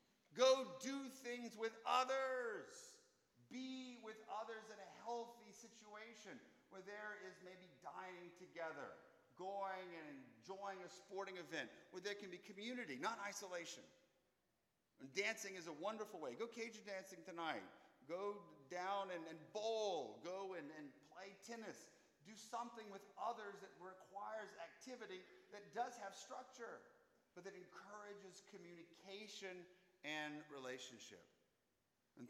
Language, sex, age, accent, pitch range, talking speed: English, male, 40-59, American, 165-220 Hz, 125 wpm